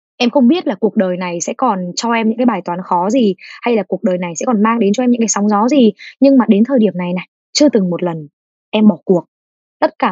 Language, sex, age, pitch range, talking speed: Vietnamese, female, 20-39, 200-265 Hz, 290 wpm